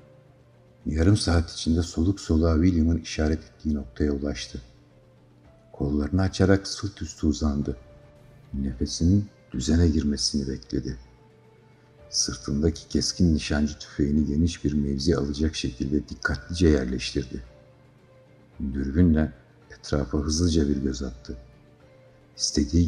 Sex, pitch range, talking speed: male, 75-95 Hz, 95 wpm